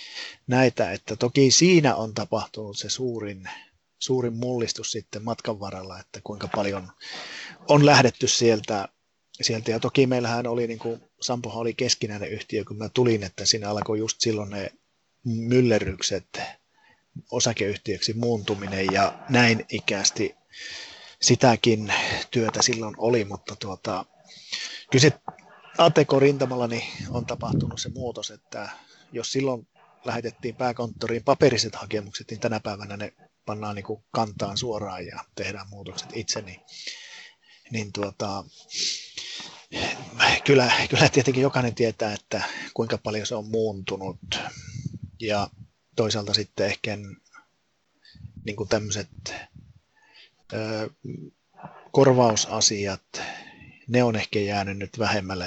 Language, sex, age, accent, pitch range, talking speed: Finnish, male, 30-49, native, 105-125 Hz, 110 wpm